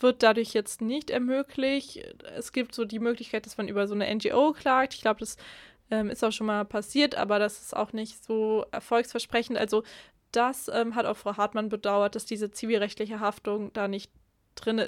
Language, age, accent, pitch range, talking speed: German, 20-39, German, 205-235 Hz, 195 wpm